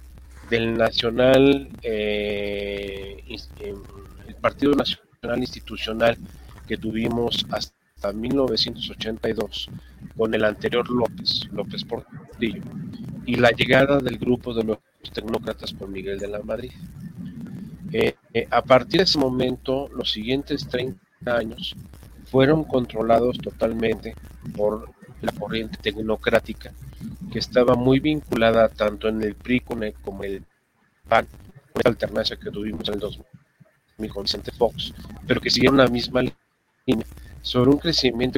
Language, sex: Spanish, male